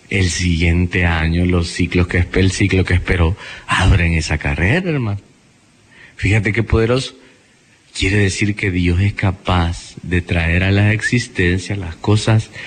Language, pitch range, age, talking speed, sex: Spanish, 95-125 Hz, 30-49, 140 wpm, male